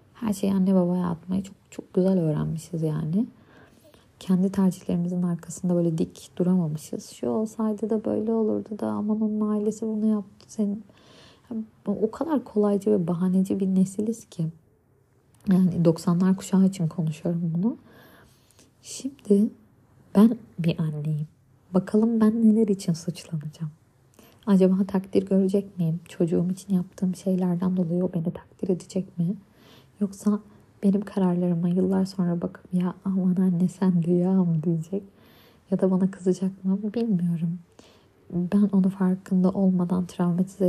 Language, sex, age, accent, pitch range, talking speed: Turkish, female, 30-49, native, 175-200 Hz, 130 wpm